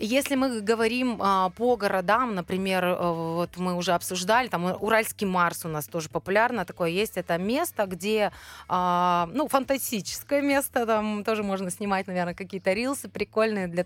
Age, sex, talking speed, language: 20-39, female, 155 wpm, Russian